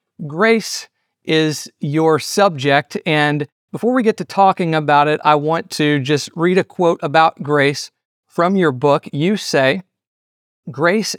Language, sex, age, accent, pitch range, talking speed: English, male, 40-59, American, 135-160 Hz, 145 wpm